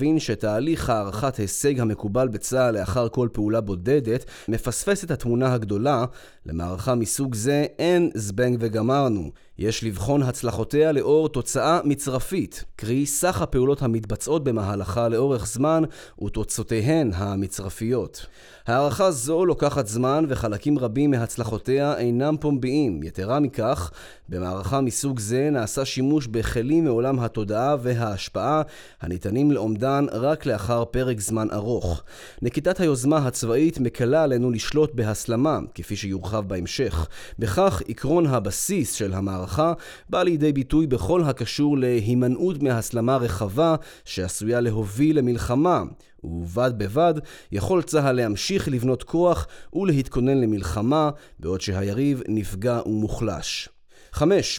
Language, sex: Hebrew, male